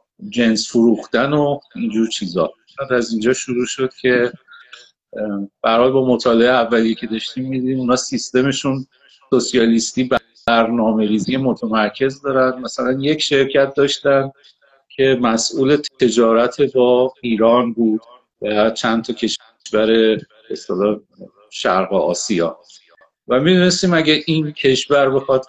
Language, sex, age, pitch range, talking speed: Persian, male, 50-69, 120-150 Hz, 110 wpm